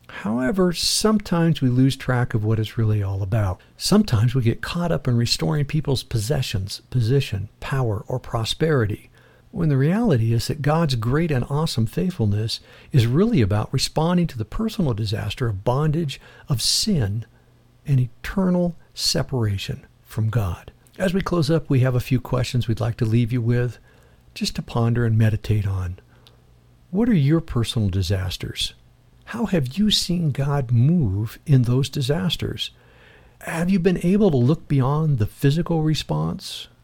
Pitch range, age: 115-155 Hz, 60-79